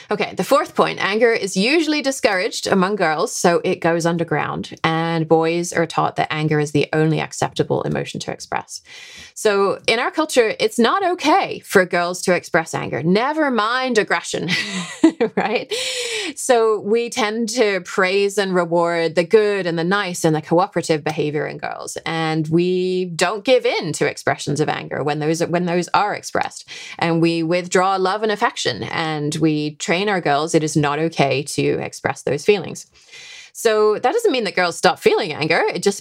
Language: English